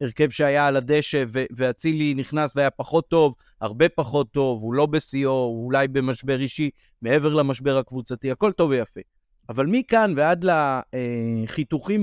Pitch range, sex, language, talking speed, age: 125-155 Hz, male, Hebrew, 145 wpm, 30-49